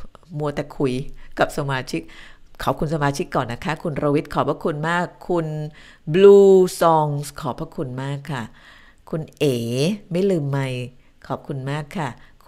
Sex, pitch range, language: female, 140-195 Hz, Thai